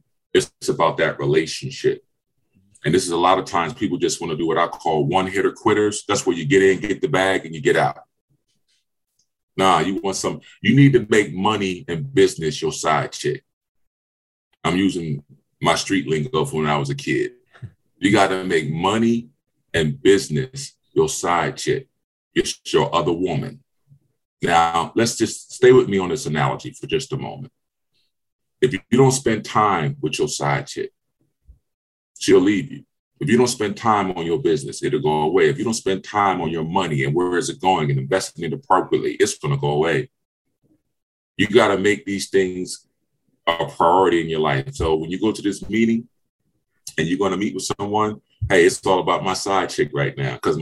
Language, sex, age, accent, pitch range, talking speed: English, male, 30-49, American, 80-130 Hz, 200 wpm